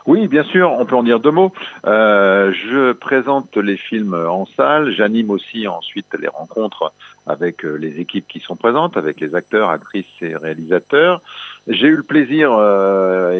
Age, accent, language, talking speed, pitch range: 50-69, French, French, 170 wpm, 95-130 Hz